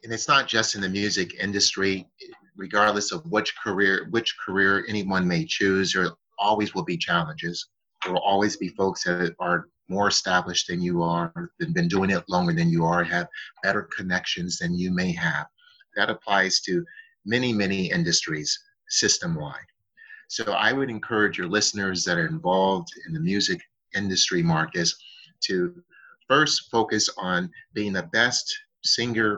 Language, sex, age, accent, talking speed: English, male, 30-49, American, 160 wpm